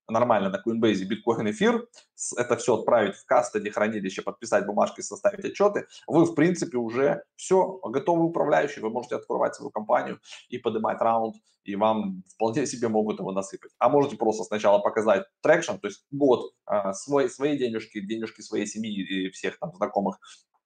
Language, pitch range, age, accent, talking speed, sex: Russian, 100-145 Hz, 20-39, native, 165 wpm, male